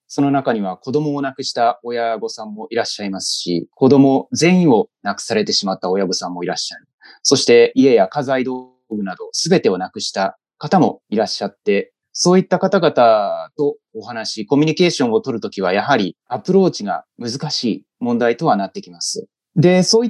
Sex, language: male, Japanese